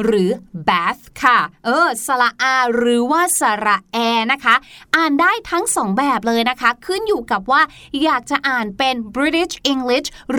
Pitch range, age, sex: 220-300 Hz, 20-39, female